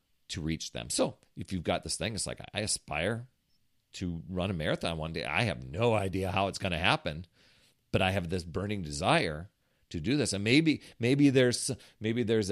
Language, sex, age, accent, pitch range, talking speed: English, male, 40-59, American, 80-125 Hz, 205 wpm